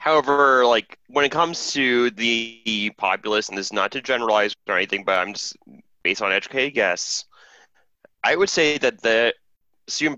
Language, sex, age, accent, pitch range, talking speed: English, male, 20-39, American, 95-115 Hz, 170 wpm